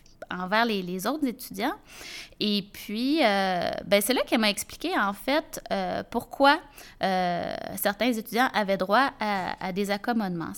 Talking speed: 155 wpm